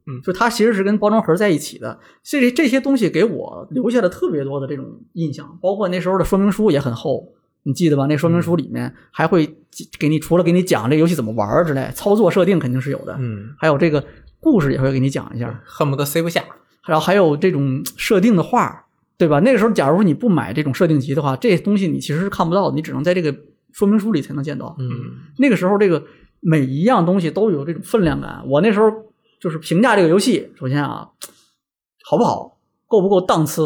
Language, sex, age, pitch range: Chinese, male, 20-39, 145-195 Hz